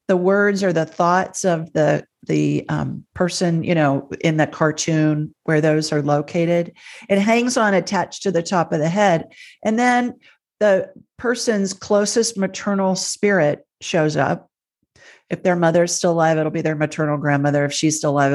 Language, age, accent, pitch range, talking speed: English, 40-59, American, 155-190 Hz, 175 wpm